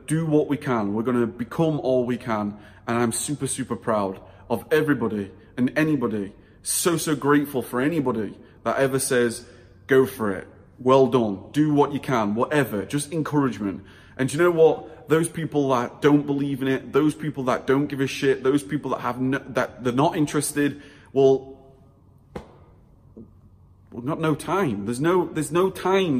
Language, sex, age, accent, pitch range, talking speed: English, male, 30-49, British, 115-145 Hz, 175 wpm